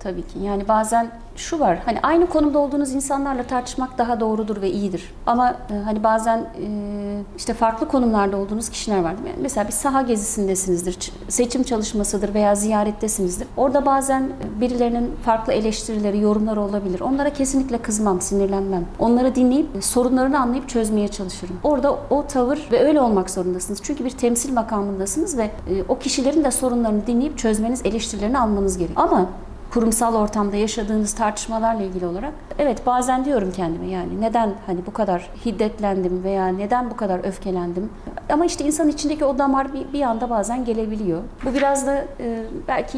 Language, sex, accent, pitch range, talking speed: Turkish, female, native, 200-255 Hz, 160 wpm